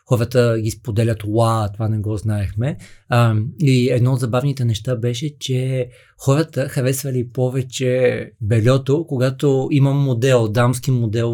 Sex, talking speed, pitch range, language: male, 130 wpm, 115-135 Hz, Bulgarian